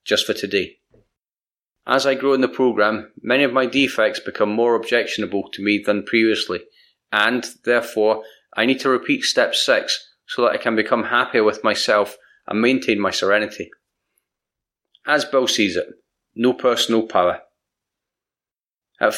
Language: English